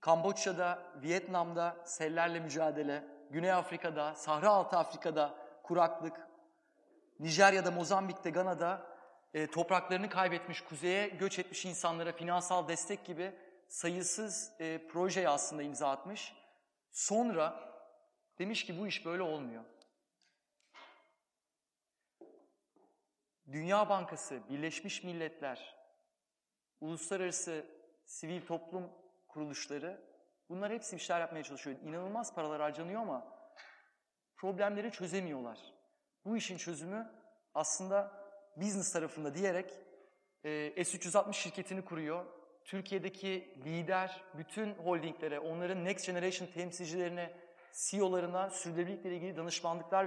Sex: male